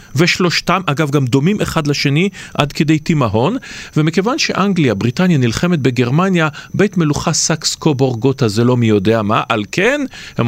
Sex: male